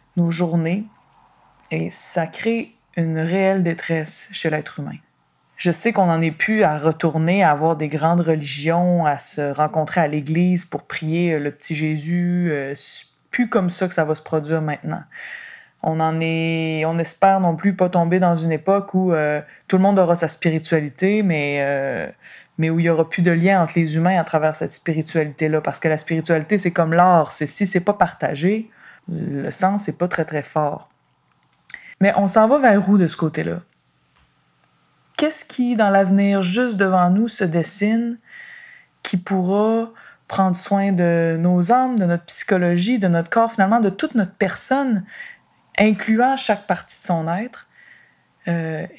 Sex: female